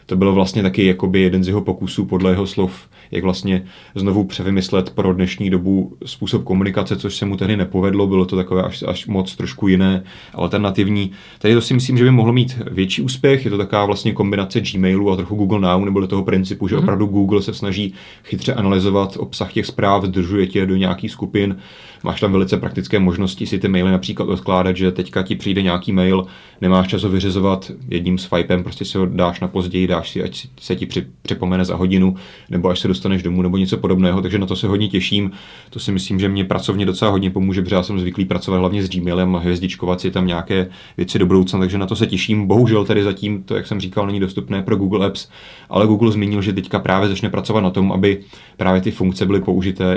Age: 30-49